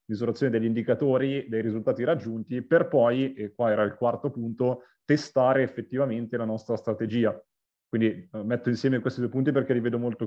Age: 30-49